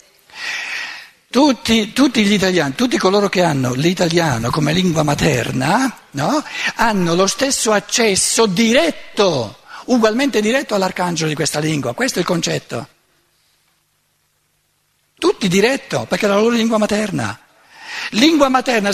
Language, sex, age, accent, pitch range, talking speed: Italian, male, 60-79, native, 175-245 Hz, 120 wpm